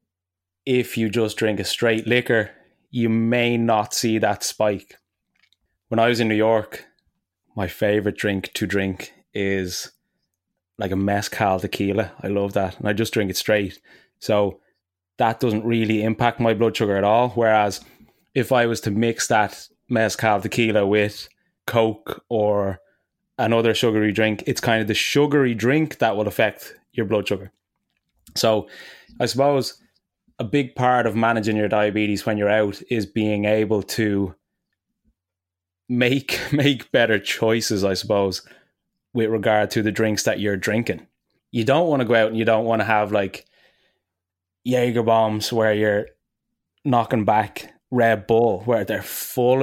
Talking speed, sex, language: 155 wpm, male, English